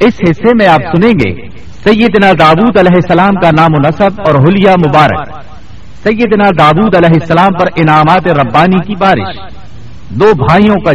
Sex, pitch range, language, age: male, 145-195 Hz, Urdu, 60-79